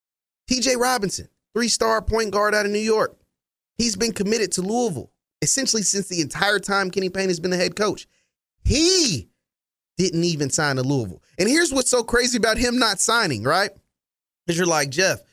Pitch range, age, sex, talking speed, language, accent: 150-225 Hz, 30-49, male, 180 wpm, English, American